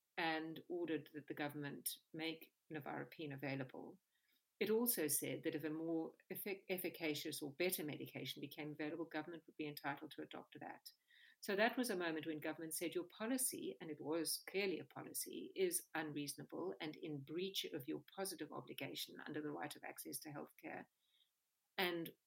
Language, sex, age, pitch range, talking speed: English, female, 50-69, 155-200 Hz, 170 wpm